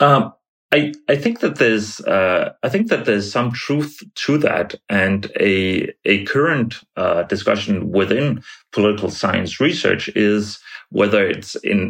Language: English